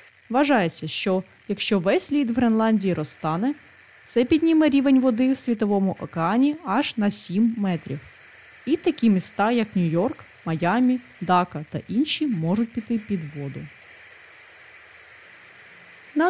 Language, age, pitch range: Ukrainian, 20-39, 180-265 Hz